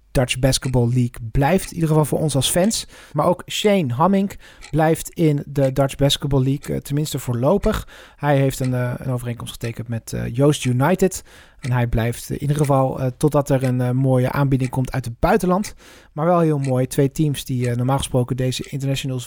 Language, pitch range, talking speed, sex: Dutch, 115-155 Hz, 195 wpm, male